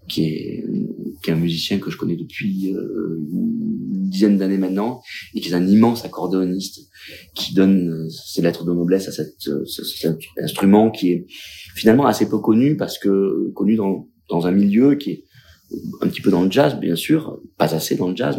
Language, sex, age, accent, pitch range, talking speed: French, male, 30-49, French, 85-100 Hz, 200 wpm